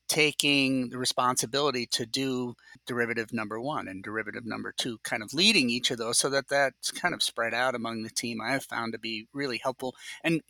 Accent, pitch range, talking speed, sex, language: American, 120-155 Hz, 205 wpm, male, English